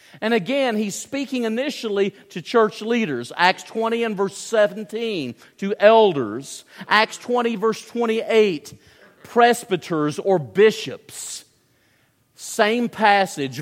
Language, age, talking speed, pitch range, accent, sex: English, 50-69, 105 wpm, 140-210 Hz, American, male